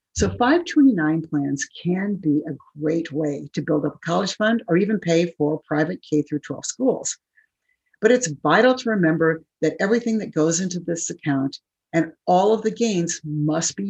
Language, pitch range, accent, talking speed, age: English, 150-190 Hz, American, 180 wpm, 60-79